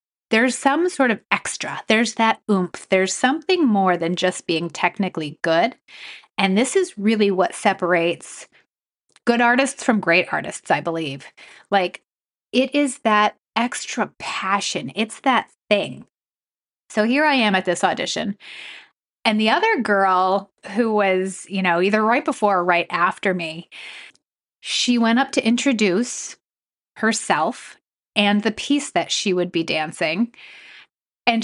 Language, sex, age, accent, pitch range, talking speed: English, female, 30-49, American, 185-245 Hz, 145 wpm